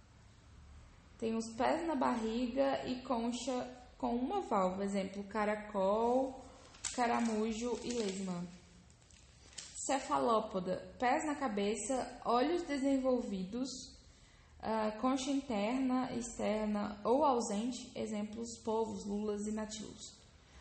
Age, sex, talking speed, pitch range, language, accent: 10-29, female, 90 wpm, 210-260 Hz, English, Brazilian